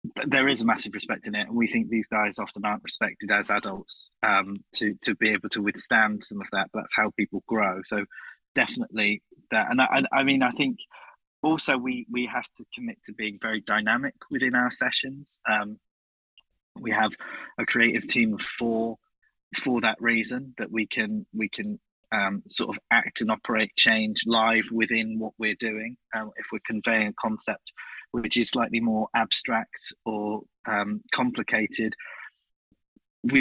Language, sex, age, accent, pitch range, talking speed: English, male, 20-39, British, 105-120 Hz, 175 wpm